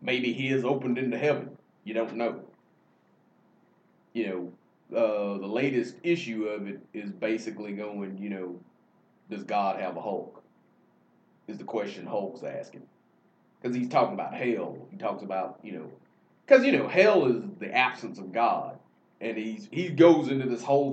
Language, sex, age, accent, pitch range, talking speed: English, male, 30-49, American, 105-170 Hz, 165 wpm